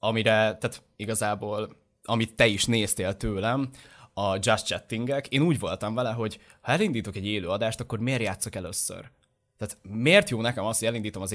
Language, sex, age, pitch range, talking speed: Hungarian, male, 20-39, 100-135 Hz, 170 wpm